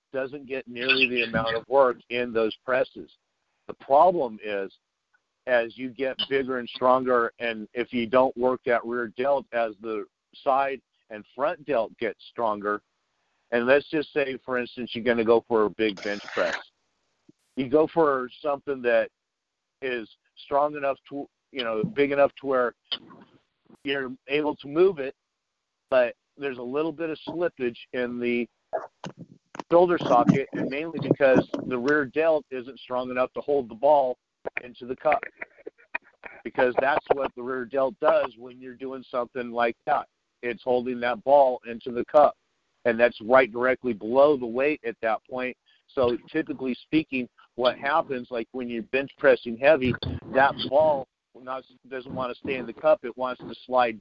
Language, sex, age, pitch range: English, male, 50-69, 120-140 Hz